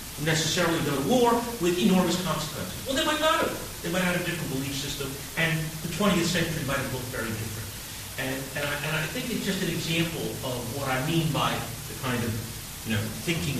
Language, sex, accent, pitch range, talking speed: English, male, American, 110-145 Hz, 215 wpm